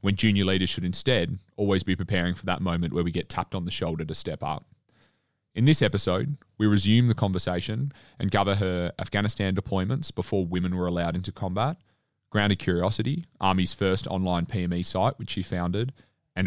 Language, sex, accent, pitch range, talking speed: English, male, Australian, 90-115 Hz, 180 wpm